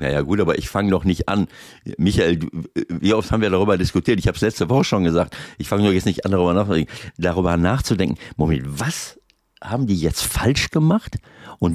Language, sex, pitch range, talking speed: German, male, 85-115 Hz, 205 wpm